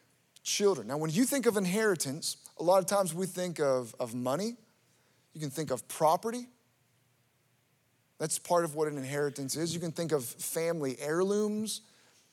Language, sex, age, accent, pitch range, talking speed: English, male, 30-49, American, 150-205 Hz, 165 wpm